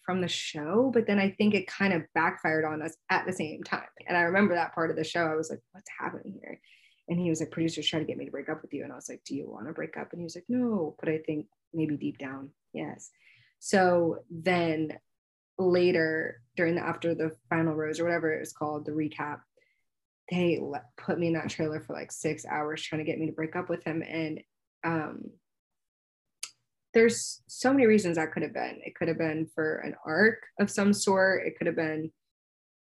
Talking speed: 230 wpm